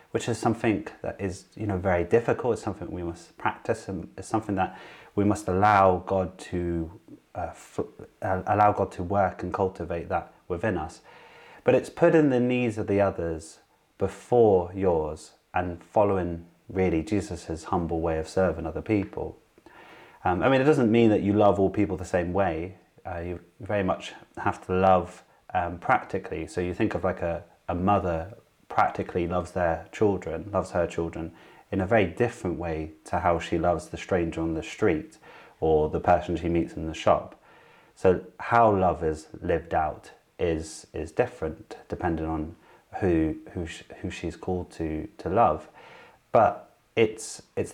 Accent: British